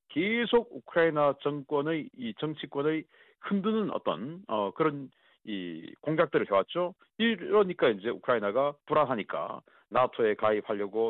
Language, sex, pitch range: Korean, male, 120-180 Hz